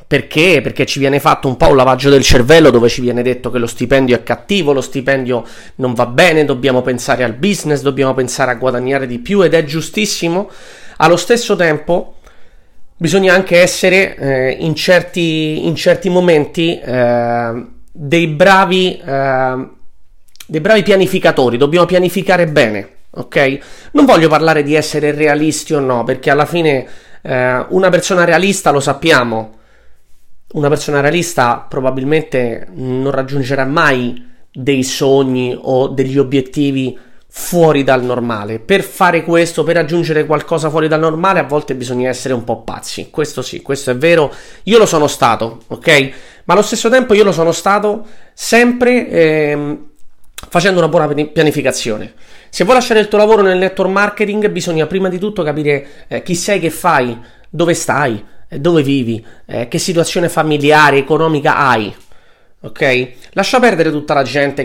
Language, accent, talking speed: Italian, native, 155 wpm